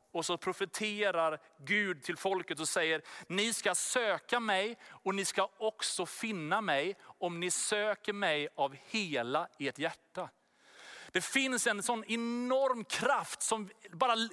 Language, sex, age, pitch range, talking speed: Swedish, male, 30-49, 190-245 Hz, 140 wpm